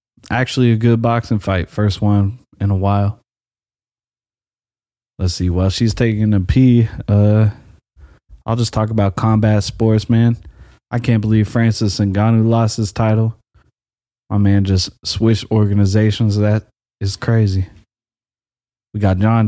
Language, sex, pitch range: English, male, 100-115 Hz